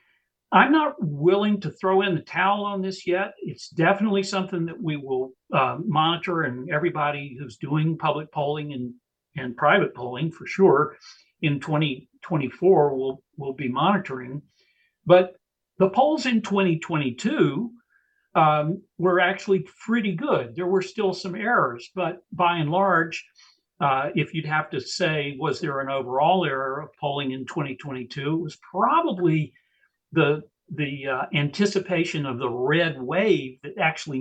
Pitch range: 140-195 Hz